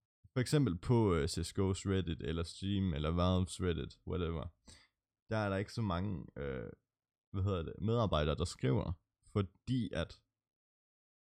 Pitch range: 85-105 Hz